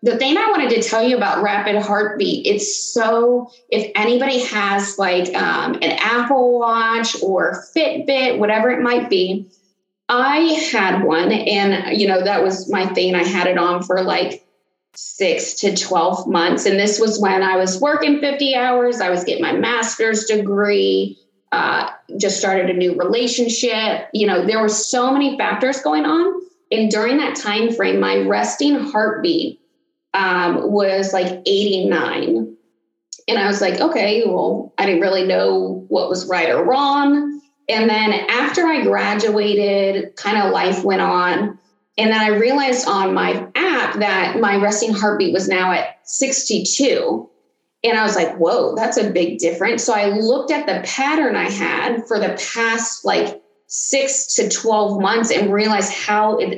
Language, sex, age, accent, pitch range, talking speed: English, female, 20-39, American, 190-245 Hz, 165 wpm